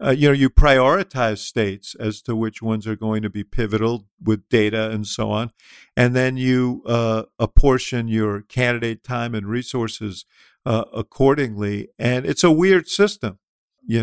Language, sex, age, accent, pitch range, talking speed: English, male, 50-69, American, 110-125 Hz, 165 wpm